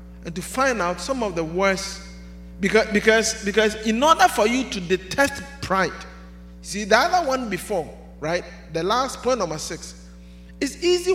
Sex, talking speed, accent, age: male, 165 wpm, Nigerian, 50-69